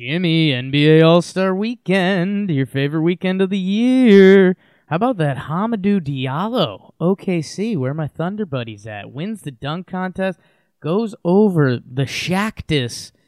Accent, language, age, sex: American, English, 20-39, male